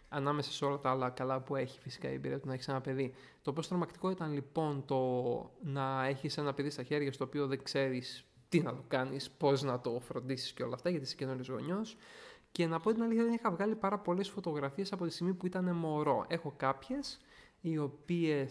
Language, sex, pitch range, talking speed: Greek, male, 140-180 Hz, 220 wpm